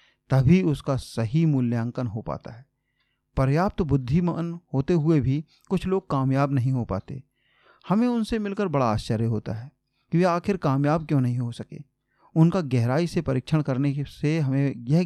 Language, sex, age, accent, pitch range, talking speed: Hindi, male, 40-59, native, 130-170 Hz, 165 wpm